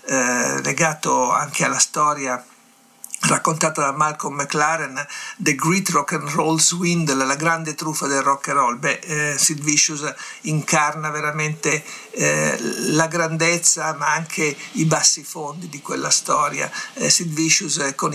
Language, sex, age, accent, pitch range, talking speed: Italian, male, 60-79, native, 145-165 Hz, 130 wpm